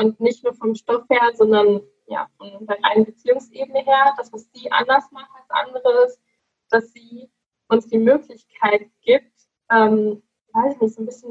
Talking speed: 170 wpm